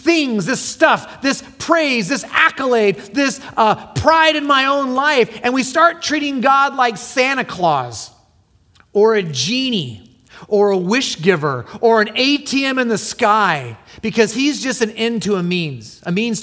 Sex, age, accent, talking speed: male, 30-49, American, 165 wpm